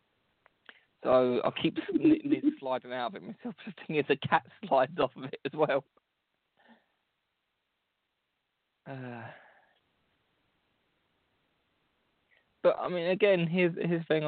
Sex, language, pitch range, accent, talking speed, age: male, English, 120-200 Hz, British, 110 wpm, 20-39